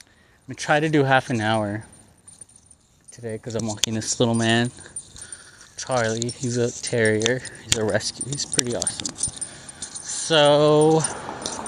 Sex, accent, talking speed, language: male, American, 140 wpm, English